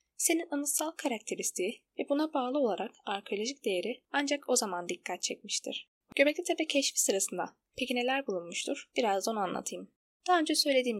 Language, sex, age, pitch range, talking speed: Turkish, female, 10-29, 195-280 Hz, 145 wpm